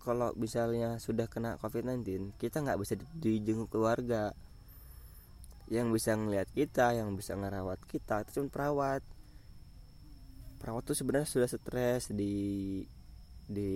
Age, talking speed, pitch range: 20-39, 125 wpm, 95-115 Hz